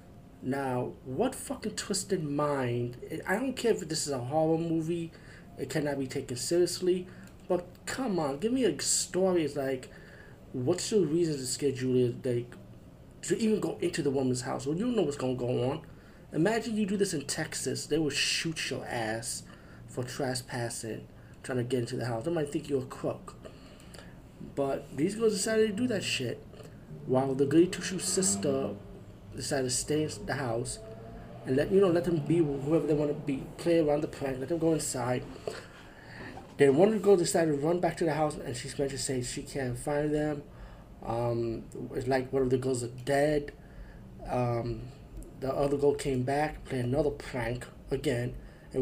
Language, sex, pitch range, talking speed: English, male, 125-165 Hz, 190 wpm